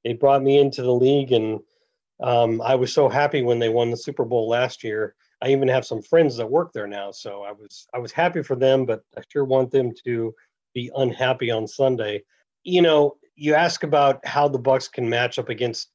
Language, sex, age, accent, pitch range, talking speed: English, male, 40-59, American, 120-140 Hz, 220 wpm